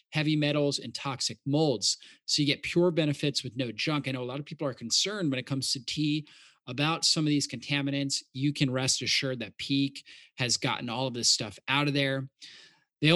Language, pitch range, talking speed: English, 130-155 Hz, 215 wpm